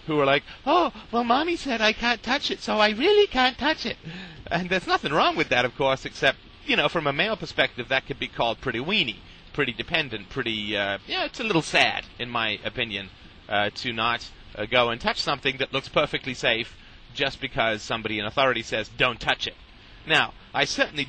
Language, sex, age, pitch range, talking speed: English, male, 30-49, 110-145 Hz, 210 wpm